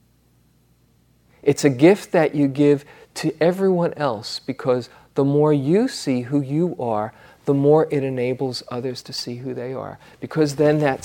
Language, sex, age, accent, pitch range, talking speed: English, male, 40-59, American, 120-145 Hz, 165 wpm